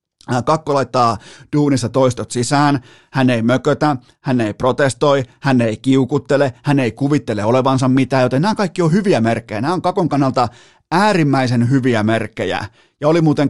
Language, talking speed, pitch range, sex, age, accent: Finnish, 155 wpm, 120-145 Hz, male, 30-49, native